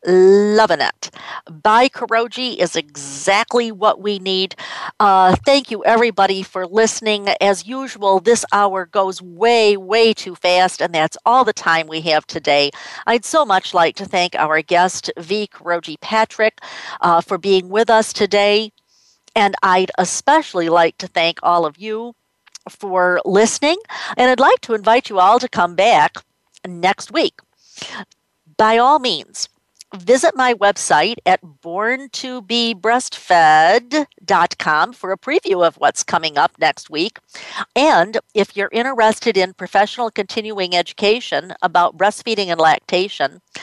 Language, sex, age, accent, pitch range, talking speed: English, female, 50-69, American, 180-230 Hz, 140 wpm